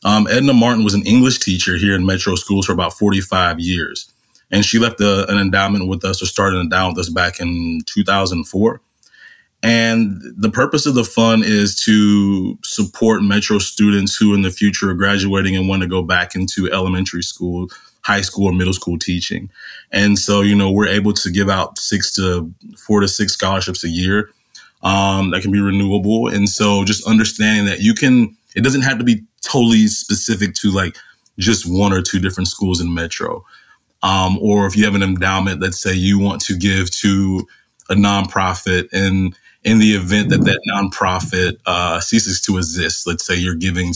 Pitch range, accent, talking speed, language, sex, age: 90-105 Hz, American, 190 wpm, English, male, 20-39